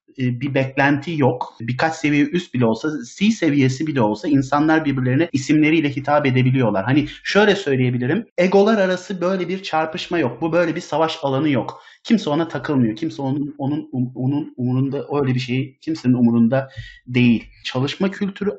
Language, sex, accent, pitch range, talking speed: Turkish, male, native, 130-165 Hz, 160 wpm